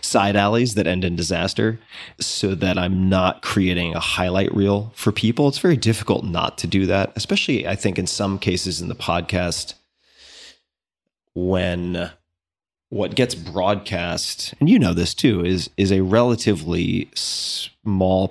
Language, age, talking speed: English, 30-49, 150 wpm